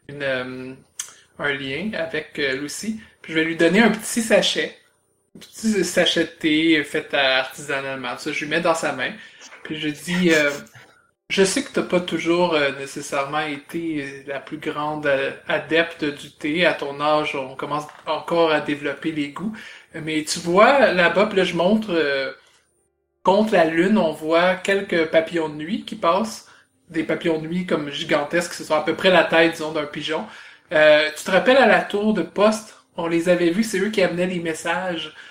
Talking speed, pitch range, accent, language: 195 wpm, 155-185 Hz, Canadian, French